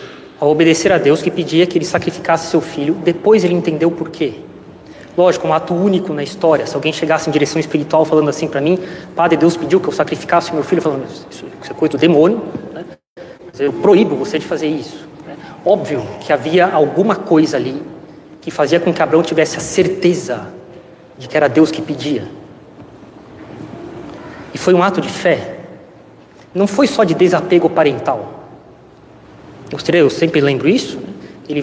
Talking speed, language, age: 170 wpm, Portuguese, 20-39